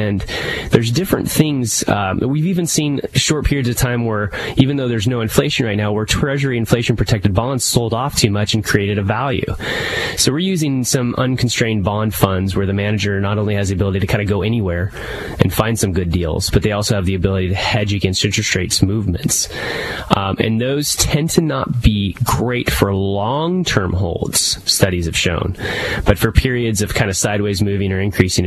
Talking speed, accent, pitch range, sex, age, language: 195 wpm, American, 100-120 Hz, male, 20-39, English